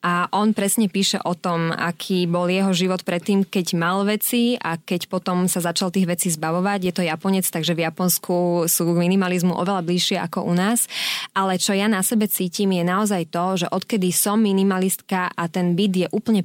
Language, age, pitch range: Slovak, 20-39, 185-215 Hz